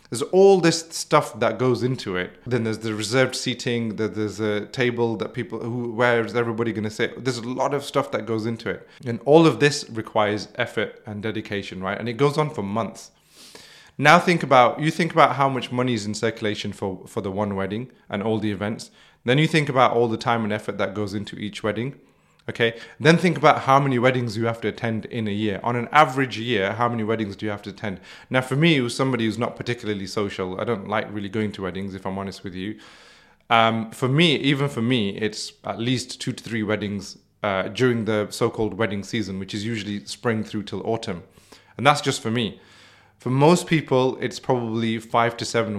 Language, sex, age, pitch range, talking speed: English, male, 30-49, 105-130 Hz, 225 wpm